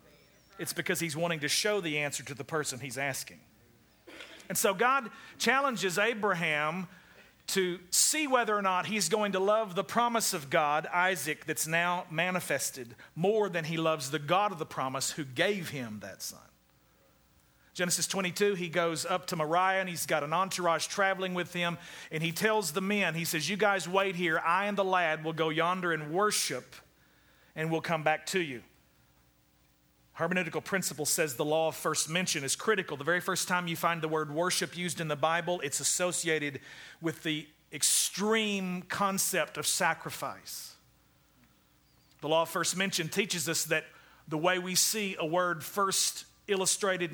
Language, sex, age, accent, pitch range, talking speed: English, male, 40-59, American, 155-190 Hz, 175 wpm